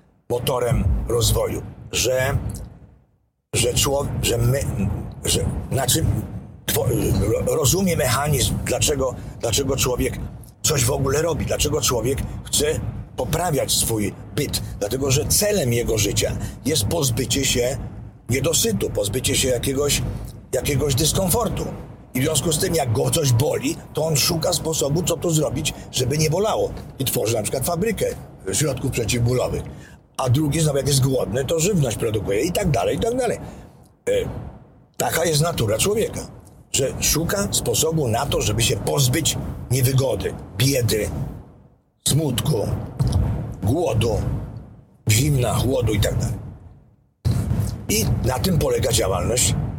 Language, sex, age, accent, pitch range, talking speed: Polish, male, 50-69, native, 115-145 Hz, 125 wpm